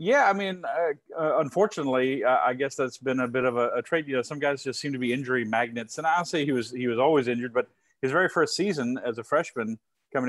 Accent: American